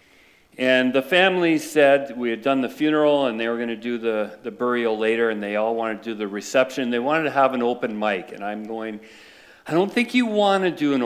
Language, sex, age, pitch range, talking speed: English, male, 50-69, 115-160 Hz, 245 wpm